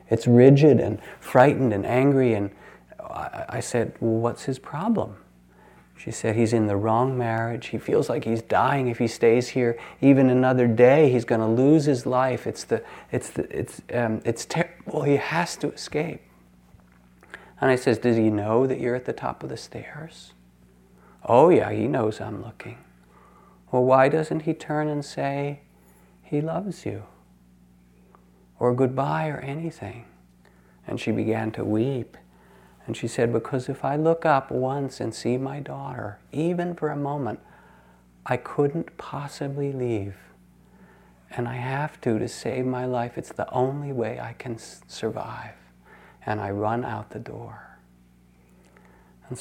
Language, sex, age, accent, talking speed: English, male, 40-59, American, 160 wpm